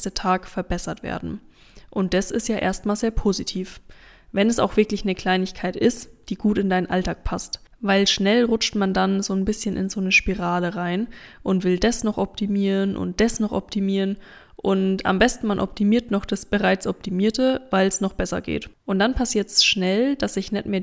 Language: German